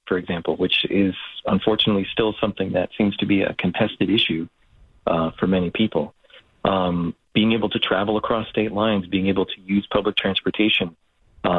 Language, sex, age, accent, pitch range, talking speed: English, male, 40-59, American, 95-110 Hz, 170 wpm